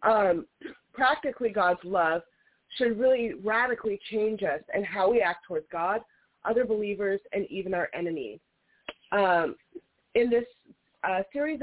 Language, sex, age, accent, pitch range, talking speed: English, female, 30-49, American, 180-230 Hz, 135 wpm